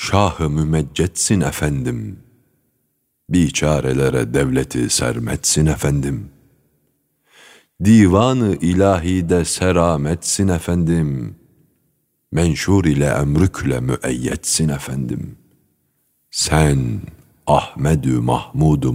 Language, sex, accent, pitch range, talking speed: Turkish, male, native, 70-100 Hz, 65 wpm